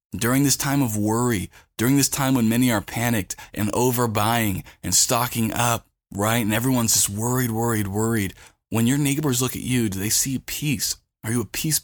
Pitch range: 100-125 Hz